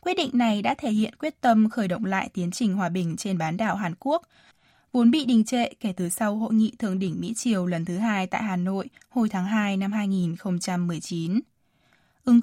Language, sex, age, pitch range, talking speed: Vietnamese, female, 10-29, 180-240 Hz, 215 wpm